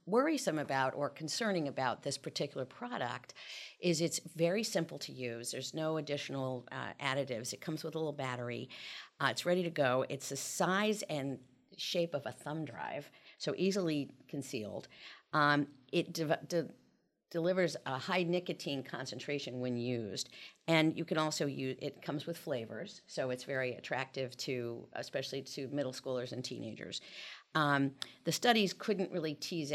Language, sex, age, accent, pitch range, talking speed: English, female, 50-69, American, 130-165 Hz, 155 wpm